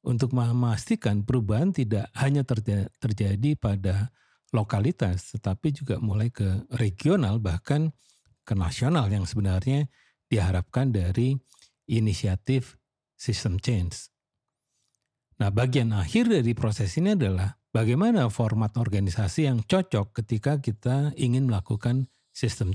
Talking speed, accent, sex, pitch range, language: 110 wpm, native, male, 105-135 Hz, Indonesian